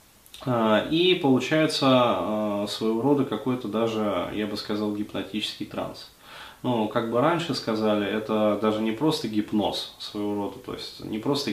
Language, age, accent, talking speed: Russian, 20-39, native, 140 wpm